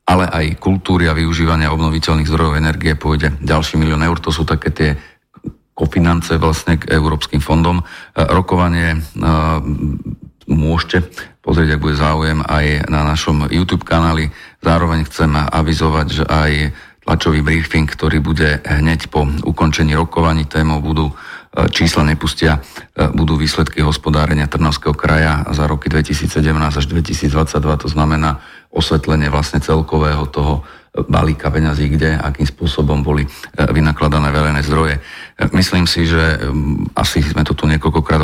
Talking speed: 130 wpm